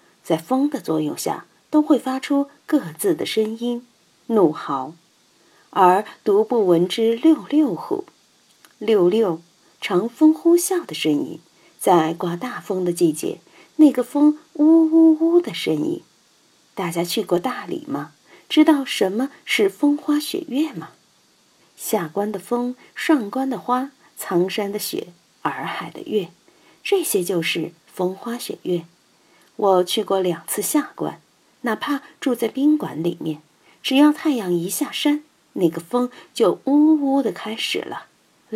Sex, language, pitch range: female, Chinese, 185-295 Hz